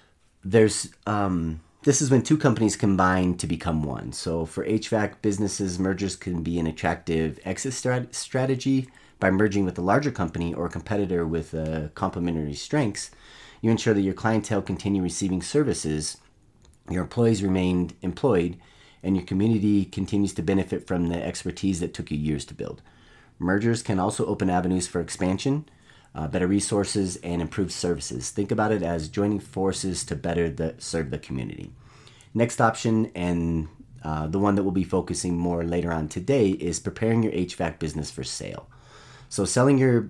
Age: 30-49